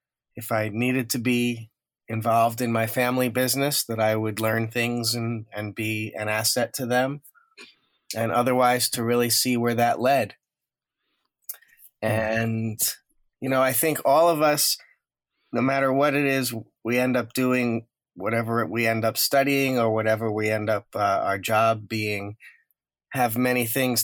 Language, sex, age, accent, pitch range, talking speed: English, male, 30-49, American, 110-125 Hz, 160 wpm